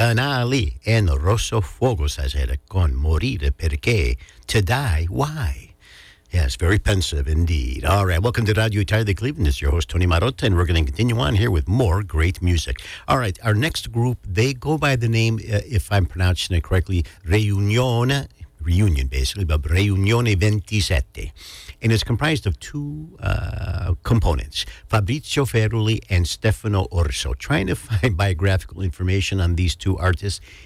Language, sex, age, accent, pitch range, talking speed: English, male, 60-79, American, 80-105 Hz, 160 wpm